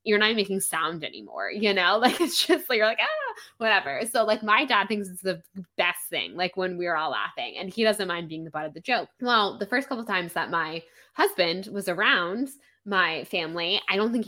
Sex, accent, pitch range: female, American, 175-245 Hz